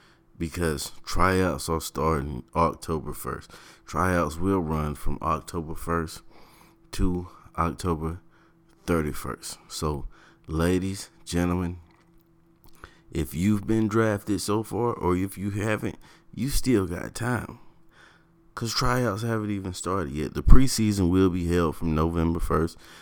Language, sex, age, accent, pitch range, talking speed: English, male, 30-49, American, 80-95 Hz, 120 wpm